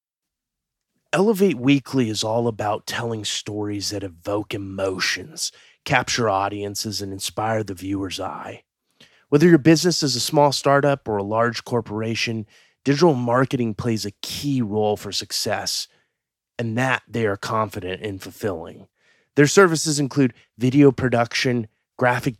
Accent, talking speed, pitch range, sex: American, 130 wpm, 100-120 Hz, male